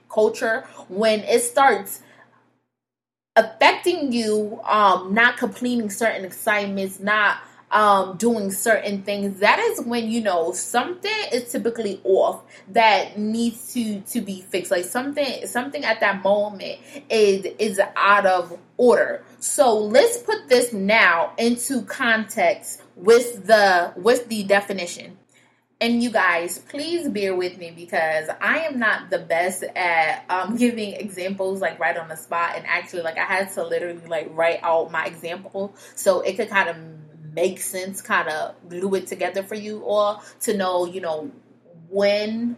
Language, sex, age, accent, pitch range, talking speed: English, female, 20-39, American, 180-230 Hz, 150 wpm